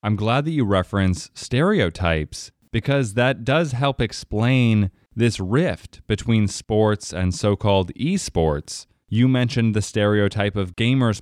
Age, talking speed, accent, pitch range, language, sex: 20-39, 130 wpm, American, 100-130 Hz, English, male